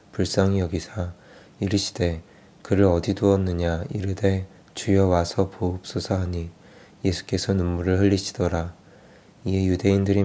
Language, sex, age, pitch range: Korean, male, 20-39, 90-100 Hz